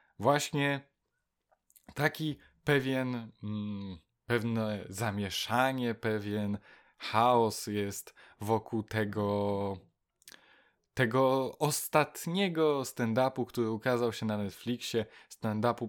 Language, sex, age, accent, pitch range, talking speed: Polish, male, 20-39, native, 110-150 Hz, 70 wpm